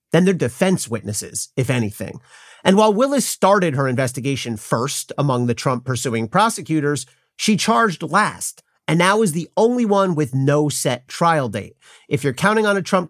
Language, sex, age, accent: English, male, 40-59, American